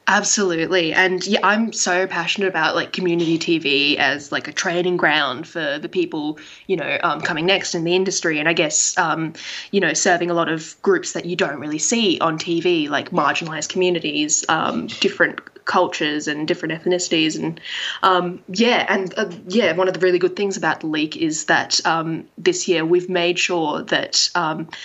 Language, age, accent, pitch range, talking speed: English, 10-29, Australian, 165-205 Hz, 190 wpm